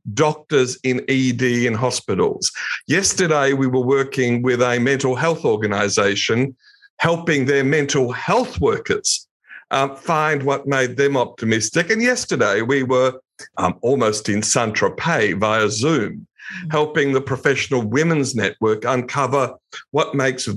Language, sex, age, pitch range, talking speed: English, male, 50-69, 110-145 Hz, 125 wpm